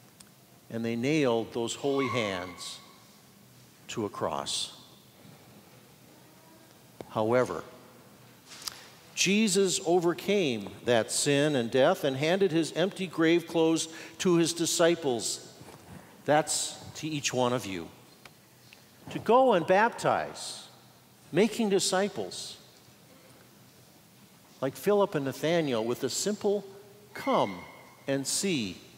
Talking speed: 95 wpm